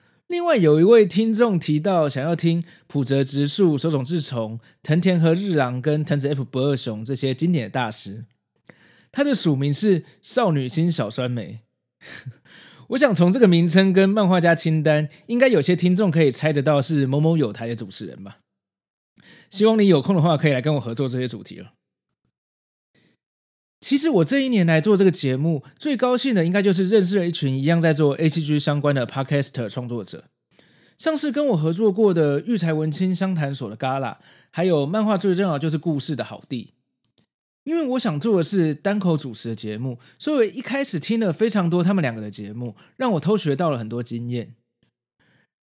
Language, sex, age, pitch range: Chinese, male, 20-39, 130-195 Hz